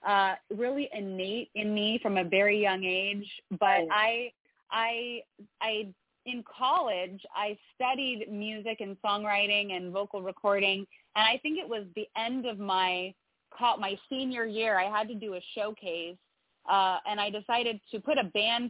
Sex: female